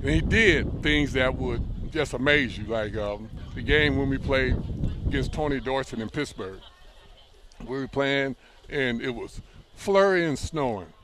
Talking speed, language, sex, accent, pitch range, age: 165 wpm, English, male, American, 110-145 Hz, 60-79